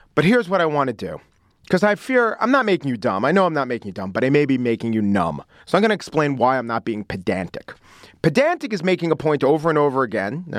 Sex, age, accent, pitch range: male, 40-59, American, 135-205 Hz